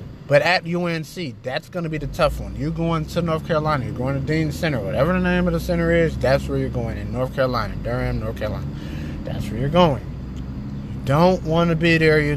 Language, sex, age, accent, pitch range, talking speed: English, male, 20-39, American, 130-165 Hz, 230 wpm